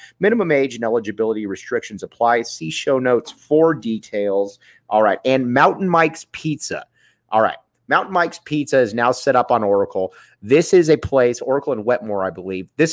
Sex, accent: male, American